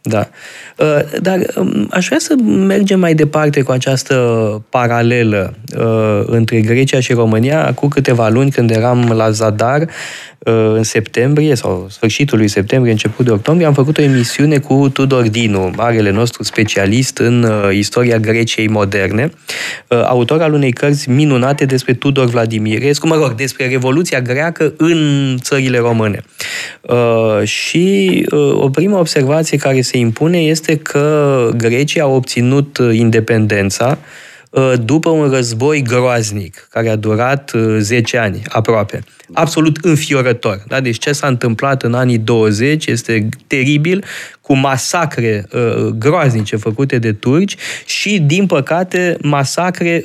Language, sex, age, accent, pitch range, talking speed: Romanian, male, 20-39, native, 115-145 Hz, 125 wpm